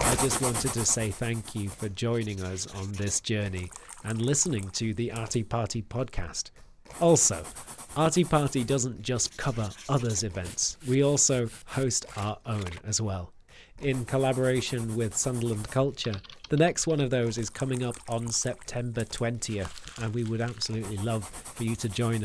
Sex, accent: male, British